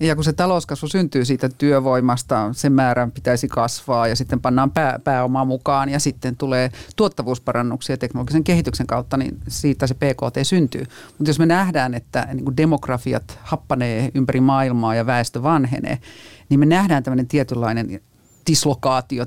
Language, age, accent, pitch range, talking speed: Finnish, 40-59, native, 125-155 Hz, 150 wpm